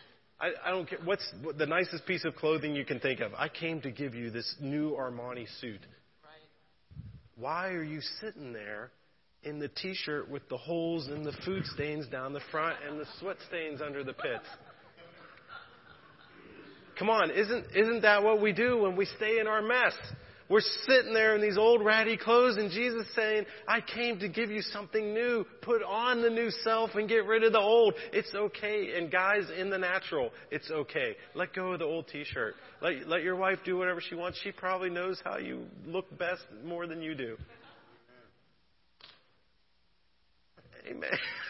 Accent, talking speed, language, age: American, 180 wpm, English, 30-49